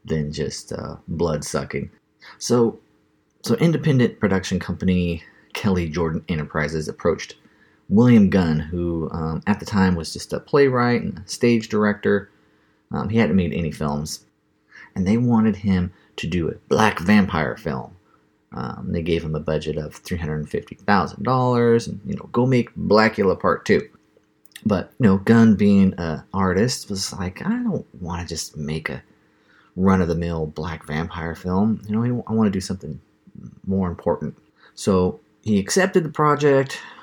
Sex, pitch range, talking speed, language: male, 85-125 Hz, 160 wpm, English